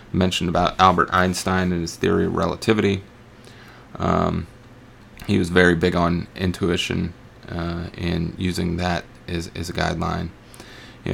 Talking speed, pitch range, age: 135 wpm, 85-105 Hz, 30-49